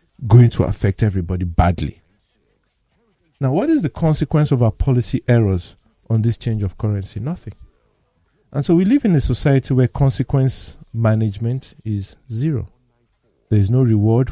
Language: English